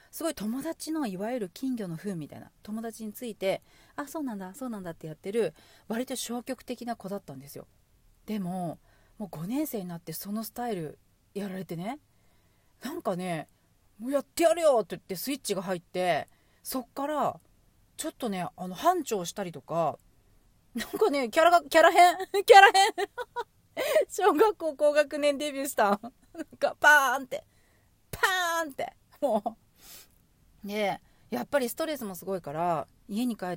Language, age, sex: Japanese, 40-59, female